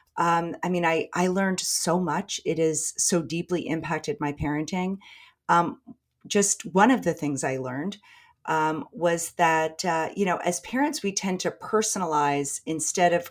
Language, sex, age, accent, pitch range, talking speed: English, female, 40-59, American, 155-185 Hz, 165 wpm